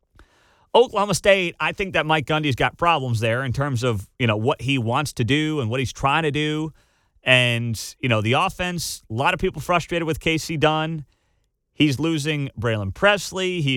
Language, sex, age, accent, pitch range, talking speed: English, male, 40-59, American, 120-170 Hz, 190 wpm